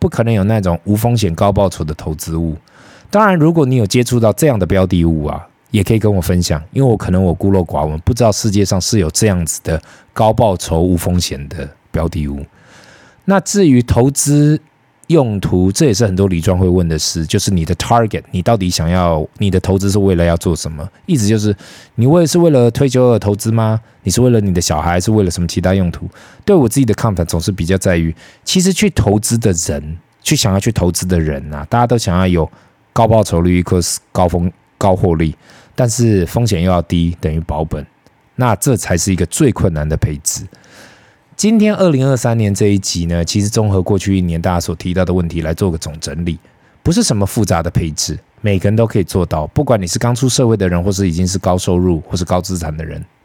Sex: male